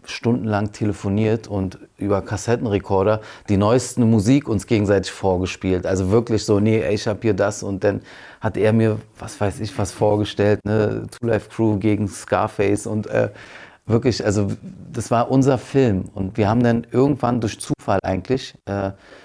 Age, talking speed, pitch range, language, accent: 40-59, 155 wpm, 100-120 Hz, German, German